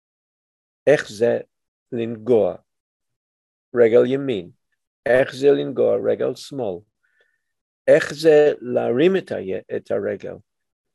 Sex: male